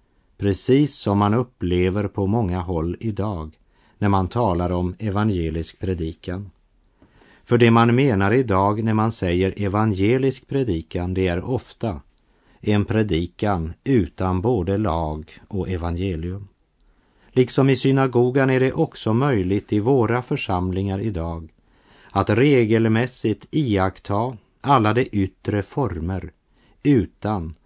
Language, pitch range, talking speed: Polish, 95-125 Hz, 115 wpm